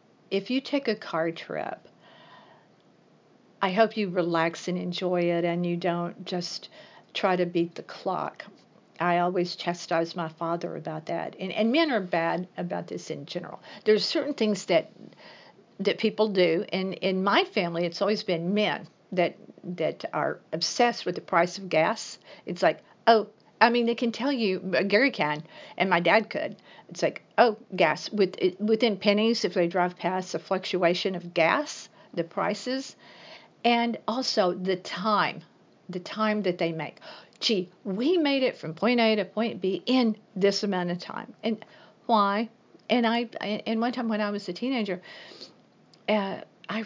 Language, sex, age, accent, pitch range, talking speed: English, female, 50-69, American, 175-220 Hz, 170 wpm